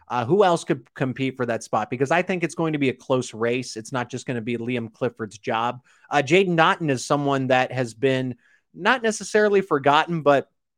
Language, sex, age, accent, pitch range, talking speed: English, male, 20-39, American, 115-145 Hz, 215 wpm